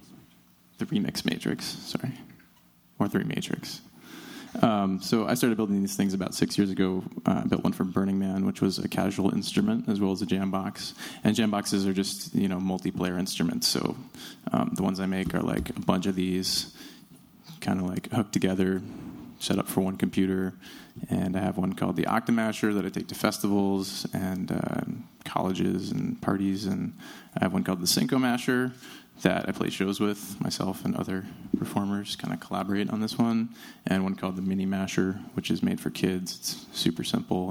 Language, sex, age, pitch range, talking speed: English, male, 20-39, 95-105 Hz, 190 wpm